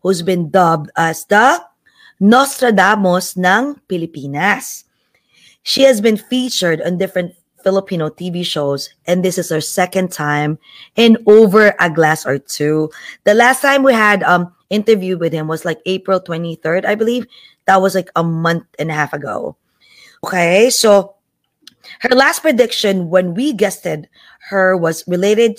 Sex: female